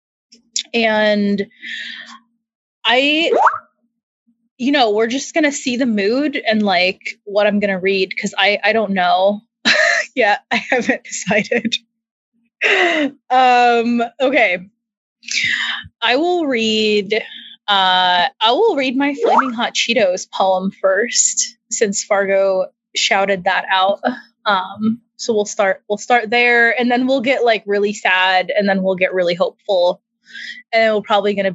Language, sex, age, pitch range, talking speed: English, female, 20-39, 200-235 Hz, 140 wpm